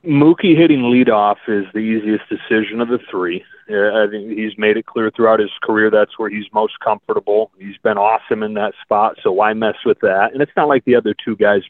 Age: 30-49